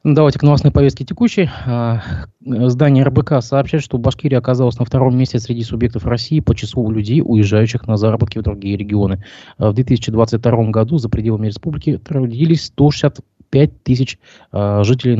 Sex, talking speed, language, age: male, 140 wpm, Russian, 20-39